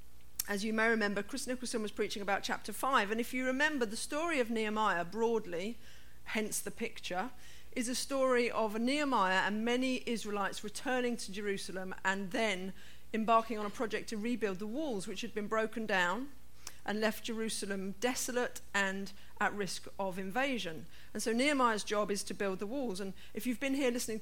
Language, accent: English, British